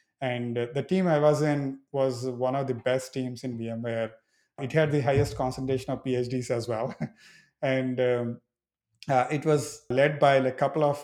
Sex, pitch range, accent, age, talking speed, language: male, 120-145 Hz, Indian, 30-49, 180 wpm, English